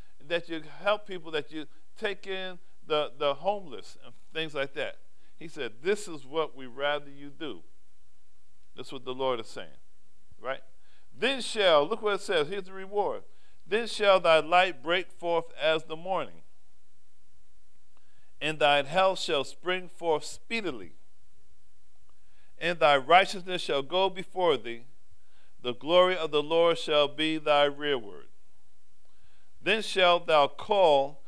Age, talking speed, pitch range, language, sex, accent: 50-69, 145 wpm, 130-175 Hz, English, male, American